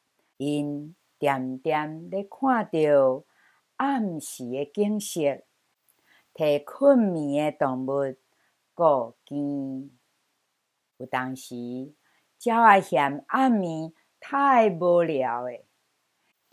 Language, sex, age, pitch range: Chinese, female, 50-69, 145-225 Hz